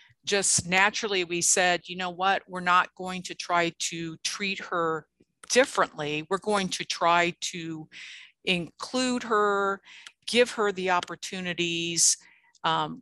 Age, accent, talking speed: 50-69, American, 130 wpm